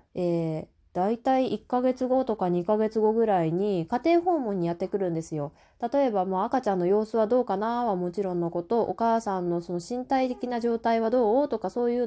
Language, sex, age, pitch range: Japanese, female, 20-39, 175-245 Hz